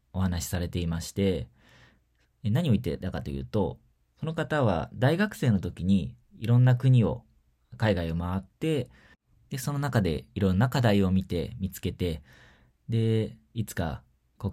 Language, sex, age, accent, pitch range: Japanese, male, 20-39, native, 85-120 Hz